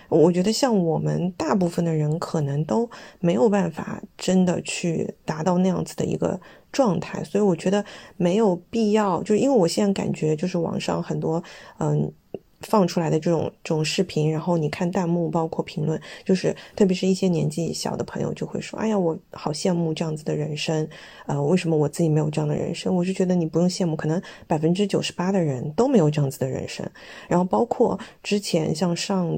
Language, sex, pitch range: Chinese, female, 165-200 Hz